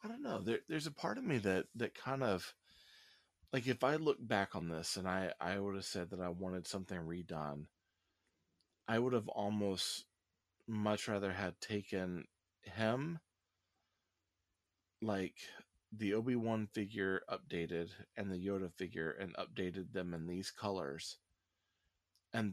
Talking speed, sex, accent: 150 wpm, male, American